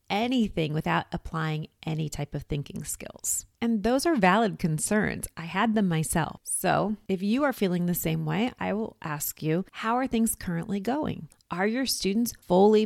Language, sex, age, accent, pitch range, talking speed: English, female, 30-49, American, 165-220 Hz, 175 wpm